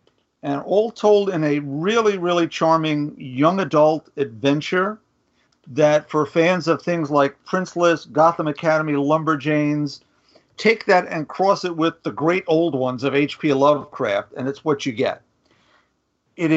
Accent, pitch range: American, 150-195 Hz